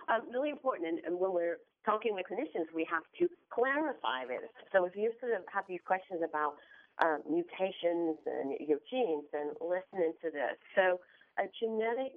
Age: 40-59